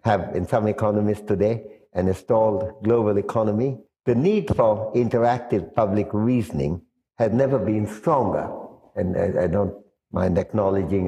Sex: male